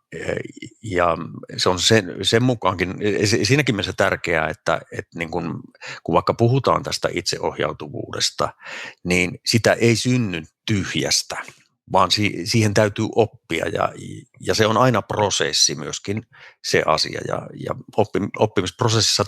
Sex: male